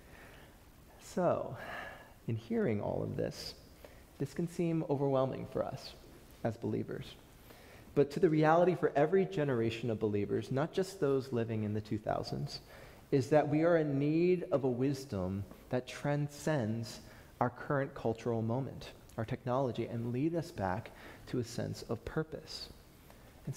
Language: English